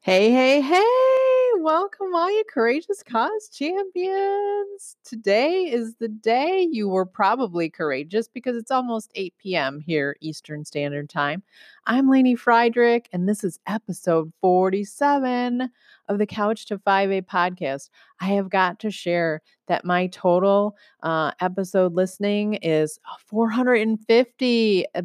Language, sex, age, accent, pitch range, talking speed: English, female, 30-49, American, 160-230 Hz, 125 wpm